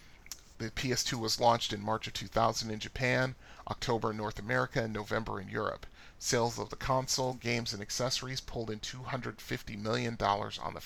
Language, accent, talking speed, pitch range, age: English, American, 170 wpm, 105-125 Hz, 40-59